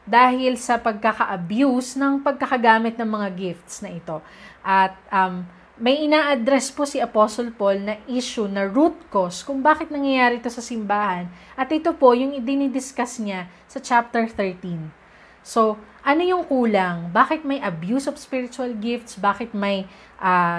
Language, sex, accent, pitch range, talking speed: English, female, Filipino, 205-260 Hz, 150 wpm